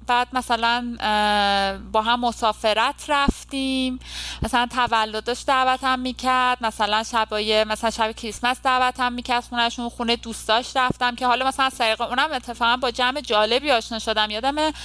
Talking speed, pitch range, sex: 145 wpm, 200-255 Hz, female